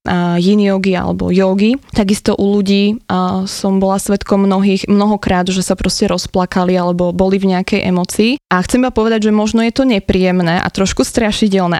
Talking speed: 165 wpm